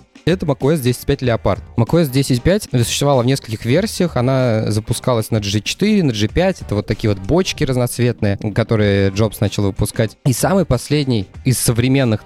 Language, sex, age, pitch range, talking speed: Russian, male, 20-39, 105-135 Hz, 150 wpm